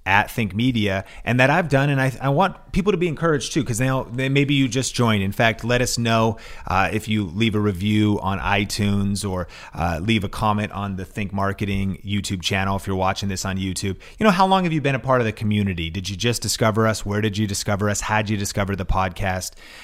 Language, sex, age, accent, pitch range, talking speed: English, male, 30-49, American, 100-130 Hz, 240 wpm